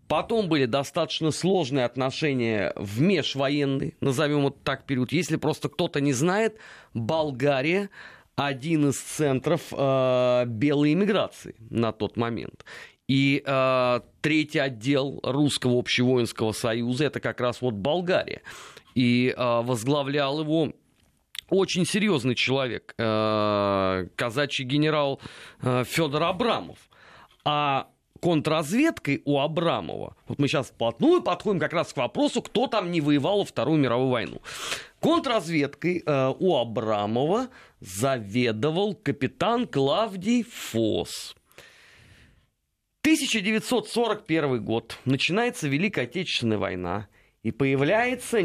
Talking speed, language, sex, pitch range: 110 wpm, Russian, male, 125-170 Hz